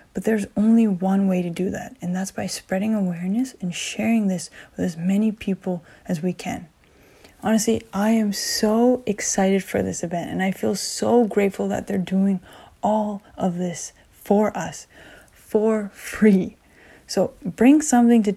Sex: female